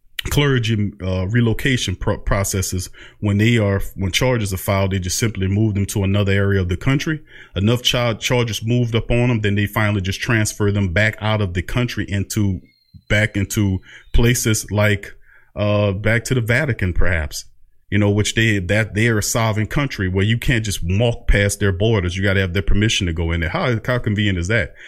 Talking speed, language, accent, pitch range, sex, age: 205 wpm, English, American, 95-120 Hz, male, 30-49